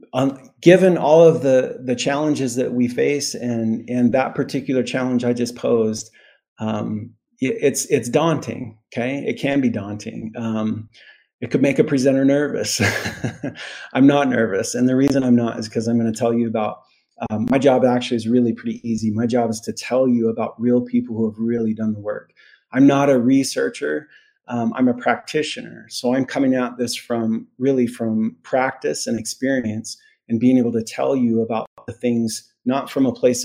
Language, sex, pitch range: English, male, 115-135 Hz